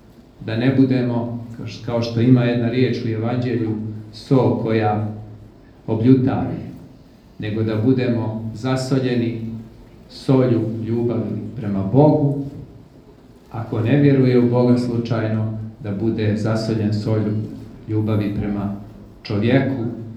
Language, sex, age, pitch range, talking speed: Croatian, male, 40-59, 105-125 Hz, 100 wpm